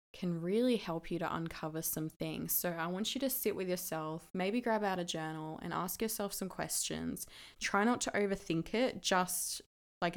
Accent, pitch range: Australian, 170-195 Hz